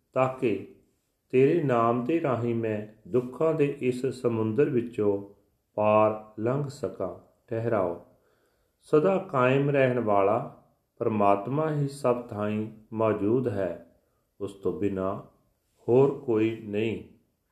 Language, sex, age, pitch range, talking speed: Punjabi, male, 40-59, 105-130 Hz, 105 wpm